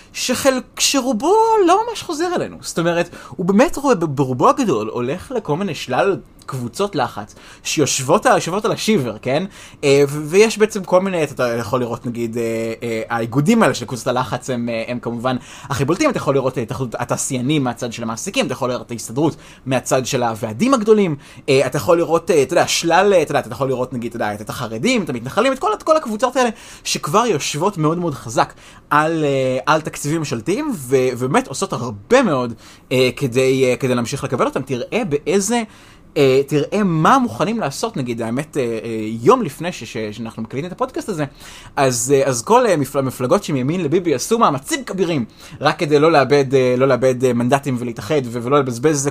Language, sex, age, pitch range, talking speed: Hebrew, male, 20-39, 125-195 Hz, 195 wpm